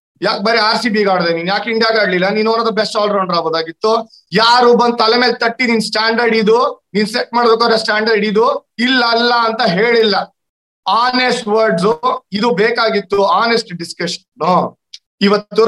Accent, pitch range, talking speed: native, 180-225 Hz, 150 wpm